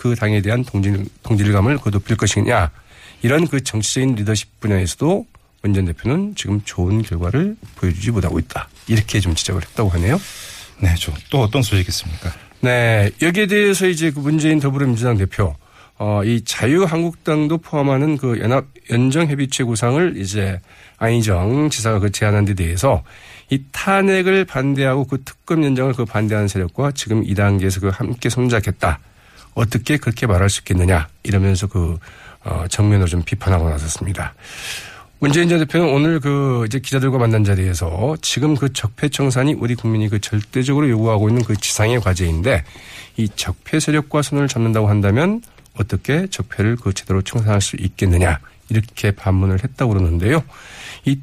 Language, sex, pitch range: Korean, male, 100-135 Hz